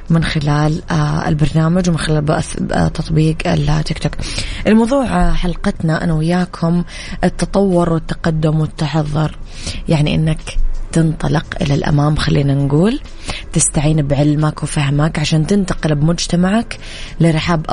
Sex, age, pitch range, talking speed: female, 20-39, 155-180 Hz, 100 wpm